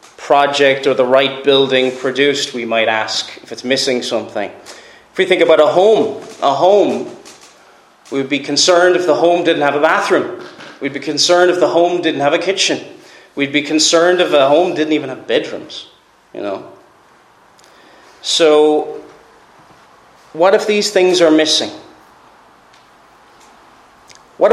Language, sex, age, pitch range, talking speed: English, male, 30-49, 135-175 Hz, 150 wpm